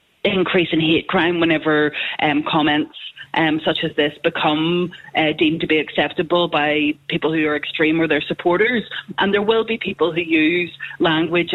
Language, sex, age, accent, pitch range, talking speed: English, female, 20-39, Irish, 155-180 Hz, 170 wpm